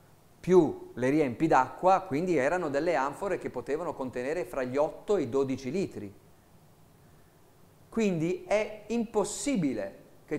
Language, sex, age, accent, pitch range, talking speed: Italian, male, 40-59, native, 125-170 Hz, 125 wpm